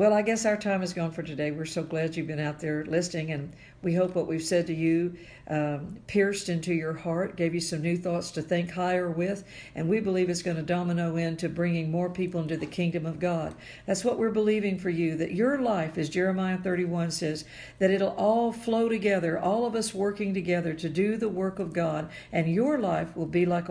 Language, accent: English, American